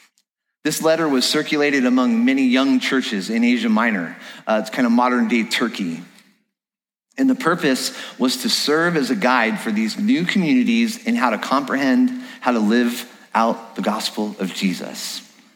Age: 30-49